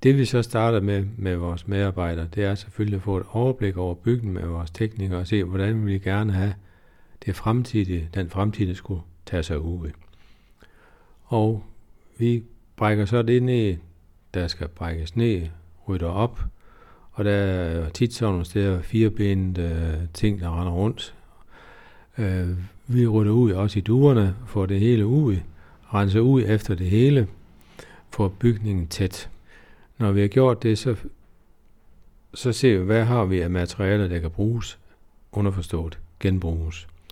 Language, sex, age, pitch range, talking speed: Danish, male, 60-79, 85-110 Hz, 155 wpm